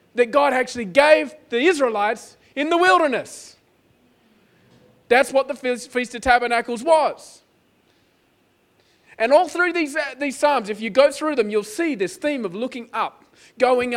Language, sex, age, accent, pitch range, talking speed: English, male, 30-49, Australian, 210-270 Hz, 150 wpm